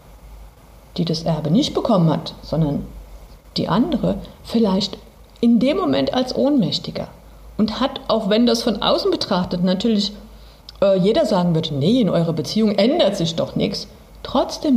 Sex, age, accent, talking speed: female, 50-69, German, 150 wpm